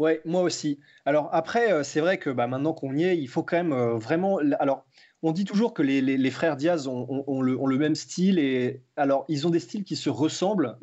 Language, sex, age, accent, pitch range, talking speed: French, male, 20-39, French, 135-190 Hz, 255 wpm